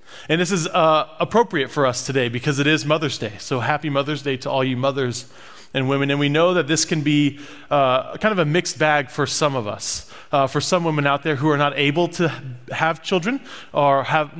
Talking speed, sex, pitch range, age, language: 230 wpm, male, 125-155 Hz, 30-49, English